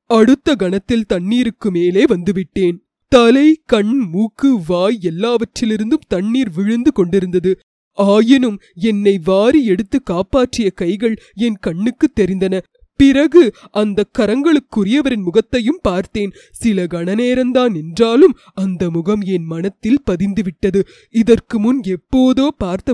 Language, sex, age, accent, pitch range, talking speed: Tamil, female, 20-39, native, 190-245 Hz, 100 wpm